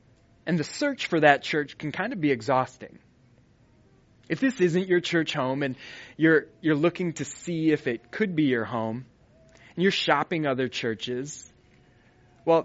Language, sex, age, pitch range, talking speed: English, male, 20-39, 125-155 Hz, 165 wpm